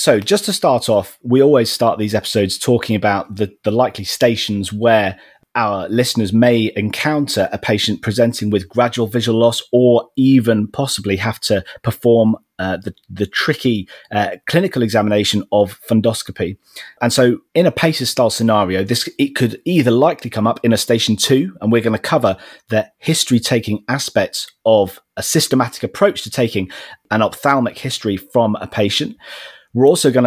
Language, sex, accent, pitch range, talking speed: English, male, British, 105-125 Hz, 170 wpm